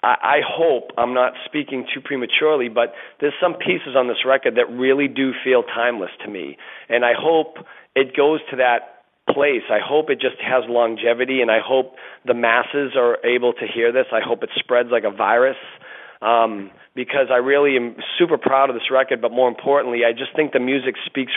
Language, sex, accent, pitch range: English, male, American, 115-135 Hz